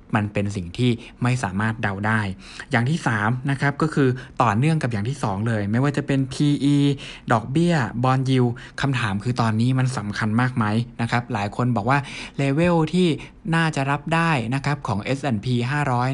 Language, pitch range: Thai, 110-140 Hz